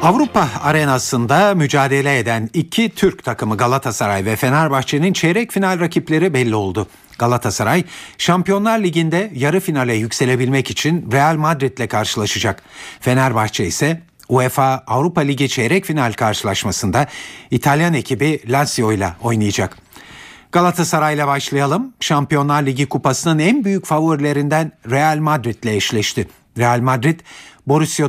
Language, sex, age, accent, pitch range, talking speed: Turkish, male, 50-69, native, 120-165 Hz, 115 wpm